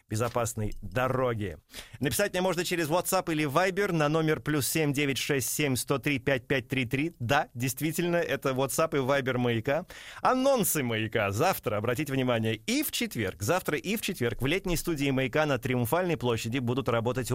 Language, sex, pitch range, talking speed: Russian, male, 125-160 Hz, 145 wpm